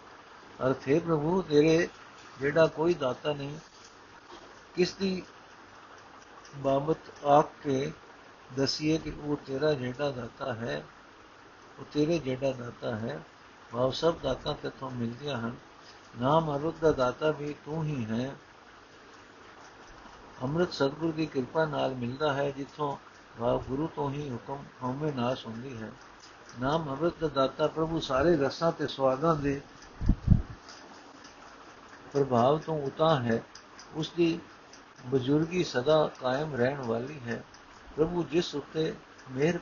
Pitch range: 130-155 Hz